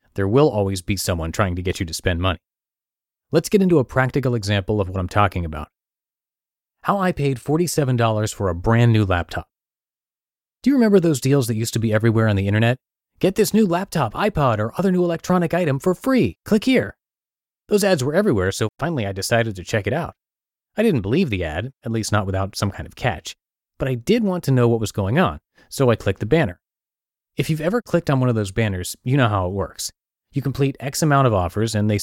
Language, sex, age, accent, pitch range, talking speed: English, male, 30-49, American, 100-140 Hz, 225 wpm